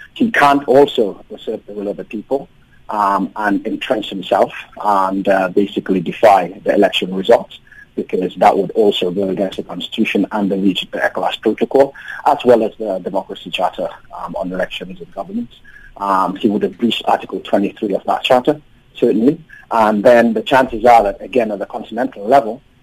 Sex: male